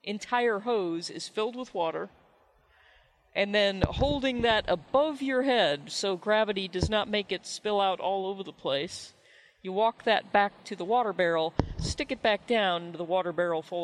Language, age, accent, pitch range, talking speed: English, 40-59, American, 180-220 Hz, 180 wpm